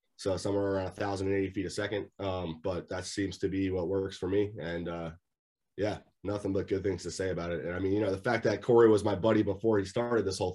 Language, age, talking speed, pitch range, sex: English, 30-49, 255 wpm, 95-120 Hz, male